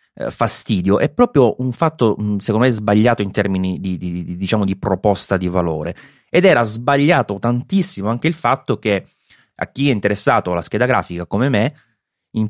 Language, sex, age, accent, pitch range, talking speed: Italian, male, 30-49, native, 90-125 Hz, 175 wpm